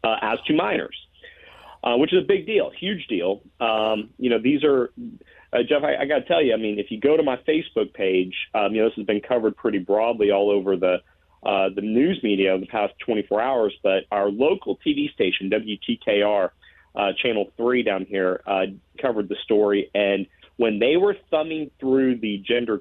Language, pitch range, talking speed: English, 100-150 Hz, 200 wpm